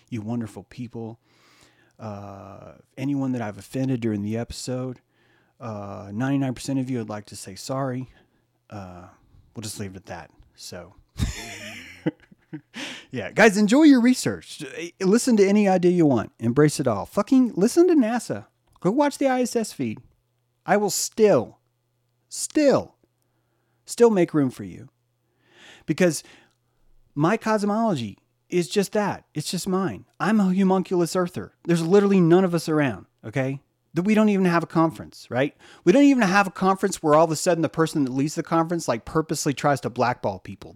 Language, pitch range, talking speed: English, 115-185 Hz, 165 wpm